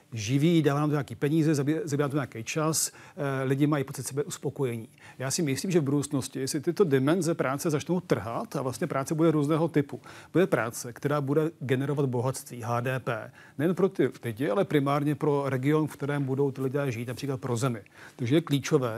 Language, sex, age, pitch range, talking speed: Czech, male, 40-59, 135-165 Hz, 195 wpm